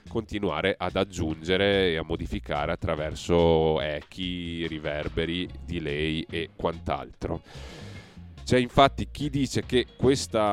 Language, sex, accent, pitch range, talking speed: Italian, male, native, 80-100 Hz, 105 wpm